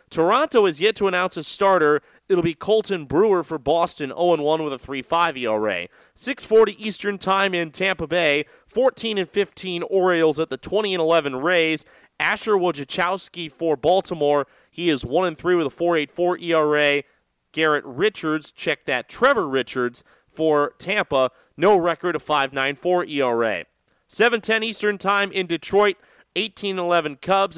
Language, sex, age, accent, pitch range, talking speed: English, male, 30-49, American, 155-205 Hz, 145 wpm